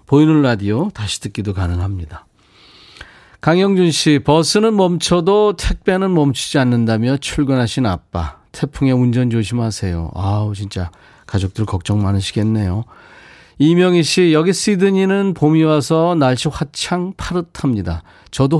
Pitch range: 105-160 Hz